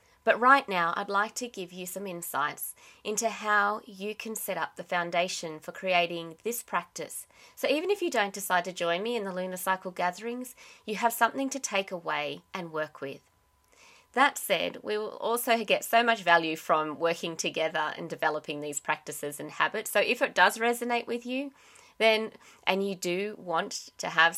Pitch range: 165-230 Hz